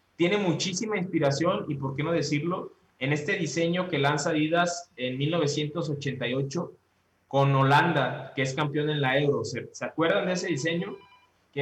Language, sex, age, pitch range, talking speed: Spanish, male, 20-39, 140-175 Hz, 160 wpm